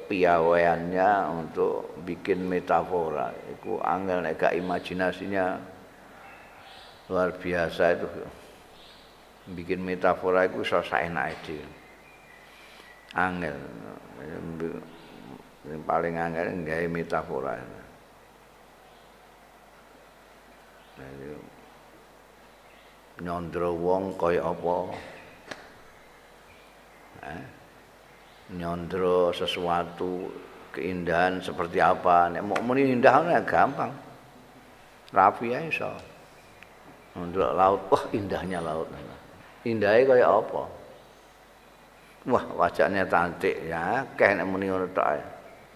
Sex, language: male, Indonesian